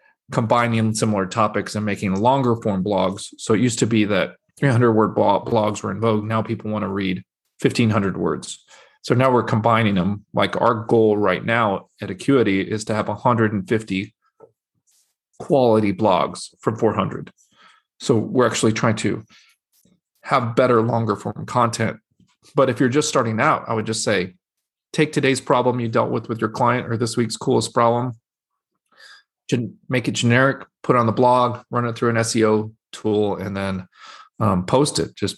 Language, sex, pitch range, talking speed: English, male, 105-125 Hz, 170 wpm